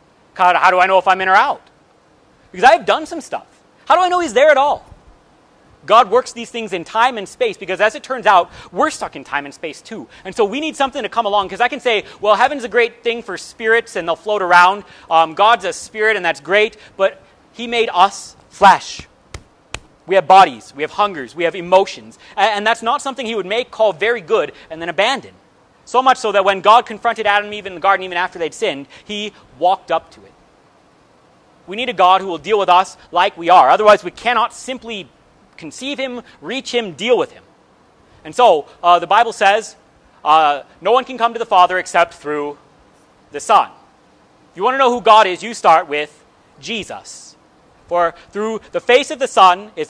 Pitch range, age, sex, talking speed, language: 180-235 Hz, 30-49, male, 220 wpm, English